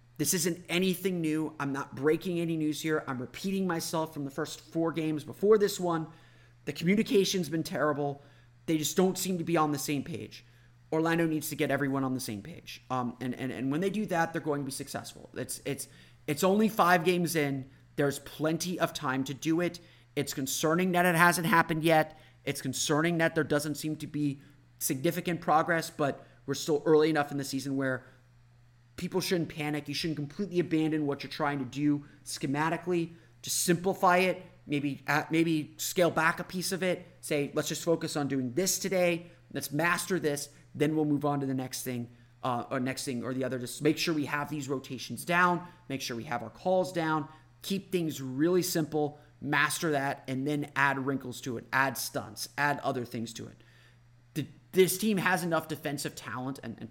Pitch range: 135-165 Hz